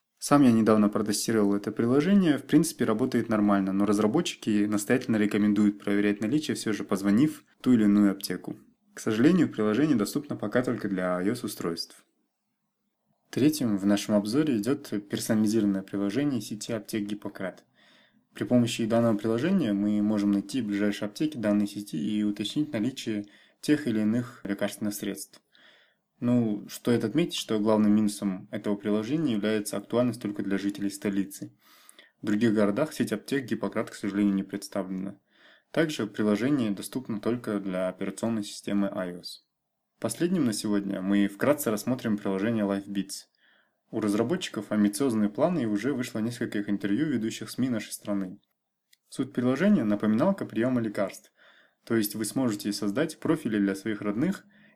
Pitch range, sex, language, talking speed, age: 100-115 Hz, male, Russian, 140 wpm, 20-39